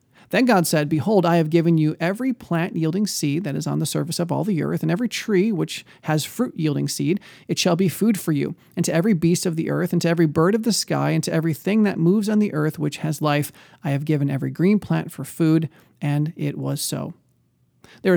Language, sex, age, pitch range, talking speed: English, male, 40-59, 150-185 Hz, 235 wpm